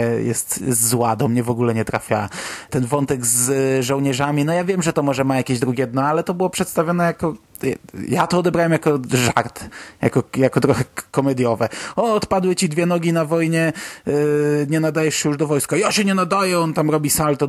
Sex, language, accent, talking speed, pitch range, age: male, Polish, native, 195 wpm, 125-145 Hz, 20-39